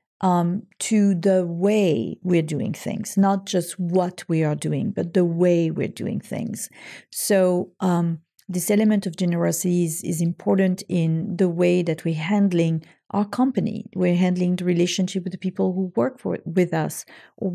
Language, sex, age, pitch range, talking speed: English, female, 40-59, 175-205 Hz, 170 wpm